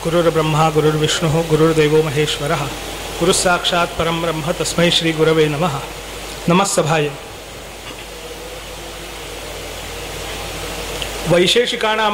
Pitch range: 200-265 Hz